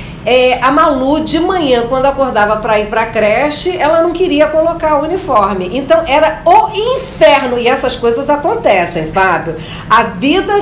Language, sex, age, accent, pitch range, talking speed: Portuguese, female, 50-69, Brazilian, 265-350 Hz, 160 wpm